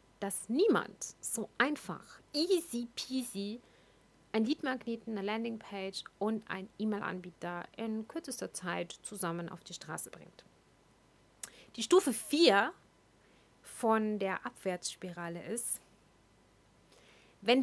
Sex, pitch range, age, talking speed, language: female, 200-245 Hz, 30-49, 100 wpm, German